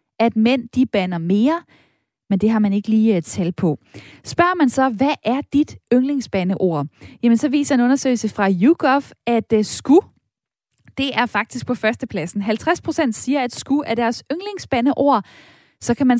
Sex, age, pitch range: female, 20-39, 215-280 Hz